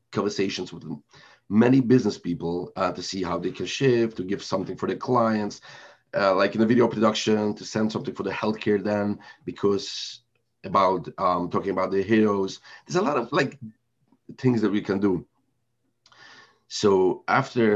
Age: 40-59